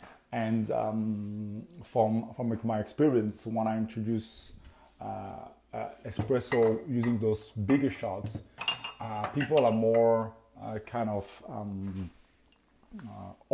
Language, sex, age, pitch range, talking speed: English, male, 30-49, 110-125 Hz, 110 wpm